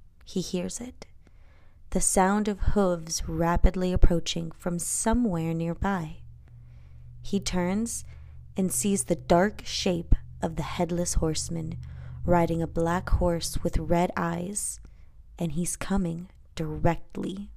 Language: English